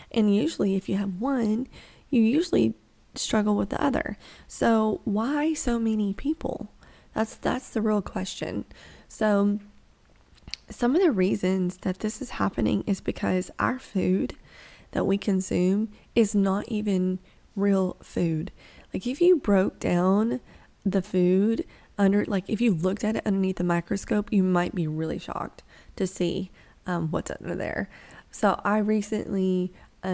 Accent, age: American, 20-39